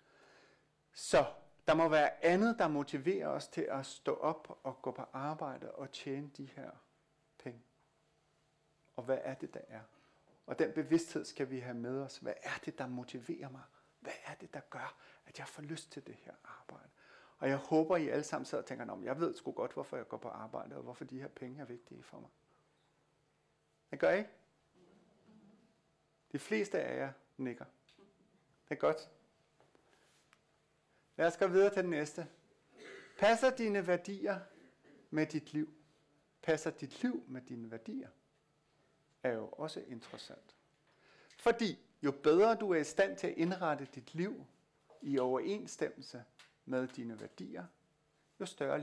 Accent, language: native, Danish